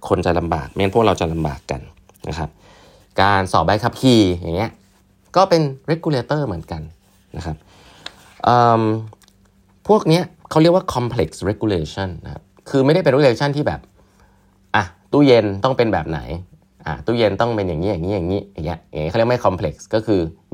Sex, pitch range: male, 85-115 Hz